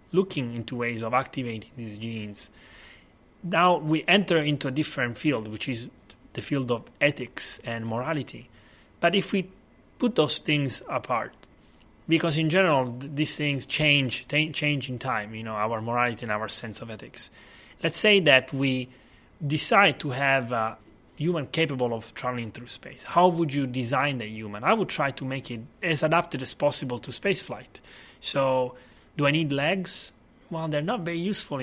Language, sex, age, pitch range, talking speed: English, male, 30-49, 120-155 Hz, 175 wpm